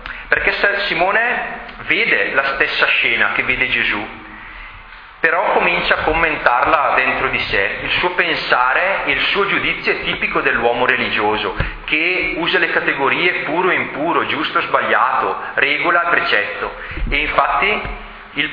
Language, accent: Italian, native